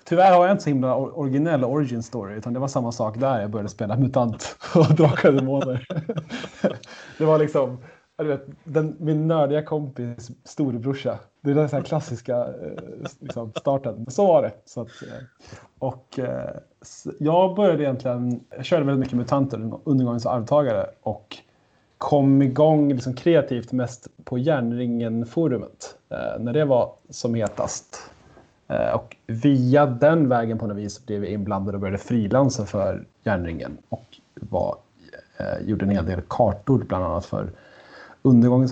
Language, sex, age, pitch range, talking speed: Swedish, male, 30-49, 115-150 Hz, 150 wpm